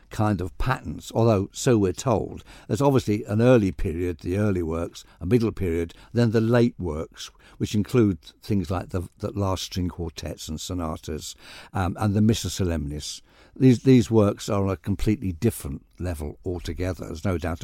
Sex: male